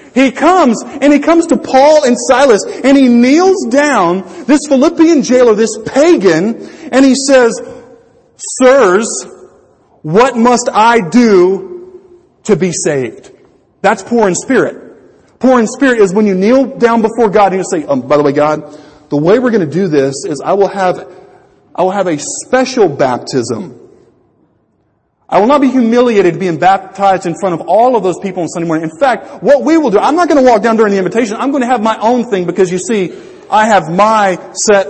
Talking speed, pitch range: 195 wpm, 175-275 Hz